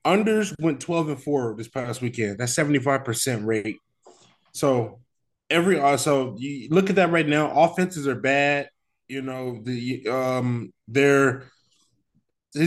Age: 20-39